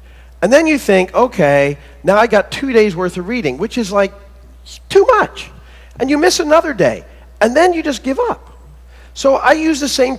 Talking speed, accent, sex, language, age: 200 wpm, American, male, English, 40-59